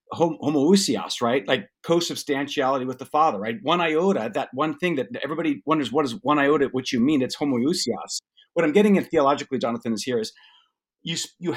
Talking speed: 185 wpm